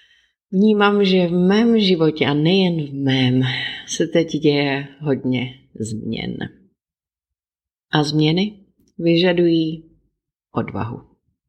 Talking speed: 95 wpm